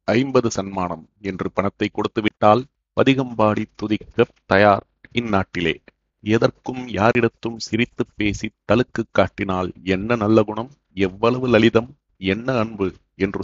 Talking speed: 105 wpm